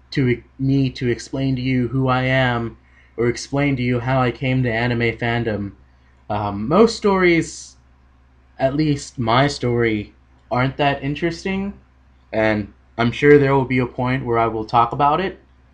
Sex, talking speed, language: male, 165 wpm, English